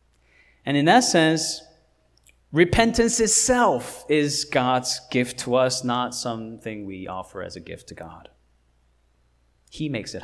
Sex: male